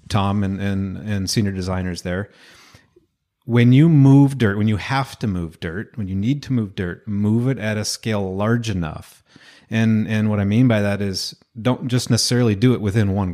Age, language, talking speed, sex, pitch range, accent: 30-49, English, 205 wpm, male, 95-115 Hz, American